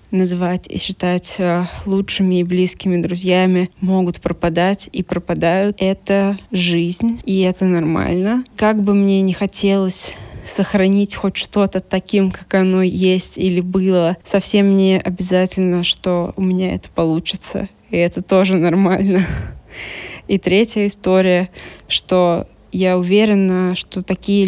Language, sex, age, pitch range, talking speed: Russian, female, 20-39, 180-195 Hz, 125 wpm